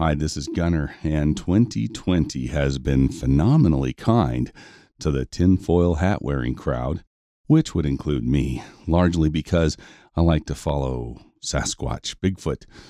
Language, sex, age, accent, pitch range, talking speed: English, male, 40-59, American, 75-100 Hz, 130 wpm